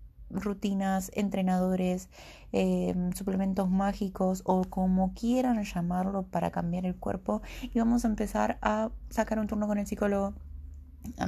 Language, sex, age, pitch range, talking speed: Spanish, female, 20-39, 175-215 Hz, 135 wpm